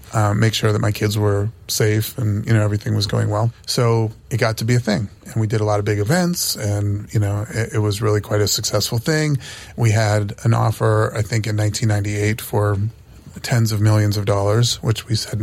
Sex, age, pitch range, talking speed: male, 30-49, 105-120 Hz, 225 wpm